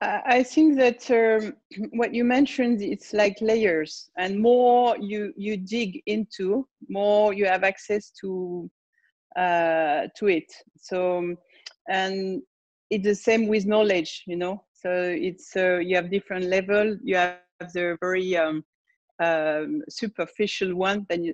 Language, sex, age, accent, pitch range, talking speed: English, female, 40-59, French, 180-225 Hz, 140 wpm